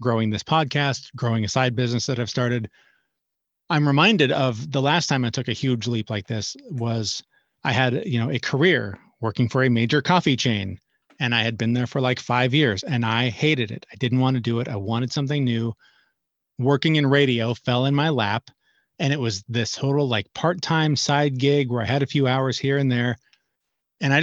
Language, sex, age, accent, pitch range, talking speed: English, male, 30-49, American, 115-145 Hz, 215 wpm